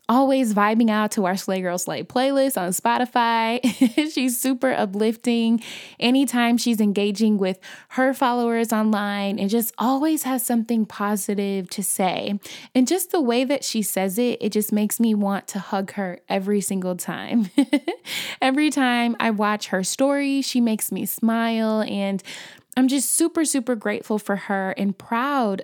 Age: 20-39